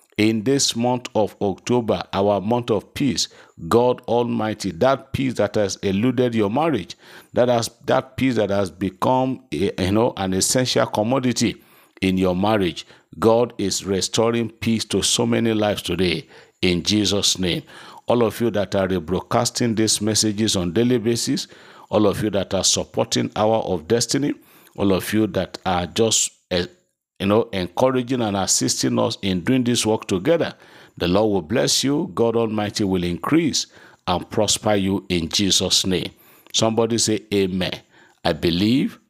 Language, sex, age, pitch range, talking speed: English, male, 50-69, 95-120 Hz, 160 wpm